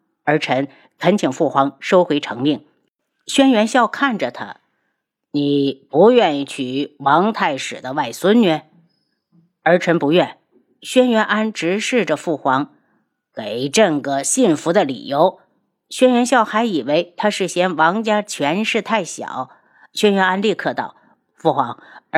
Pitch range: 150-225 Hz